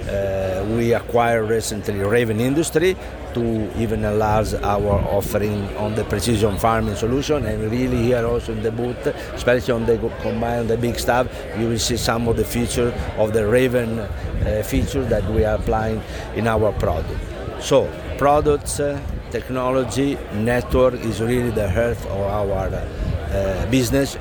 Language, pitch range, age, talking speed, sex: English, 105-120 Hz, 60-79, 150 wpm, male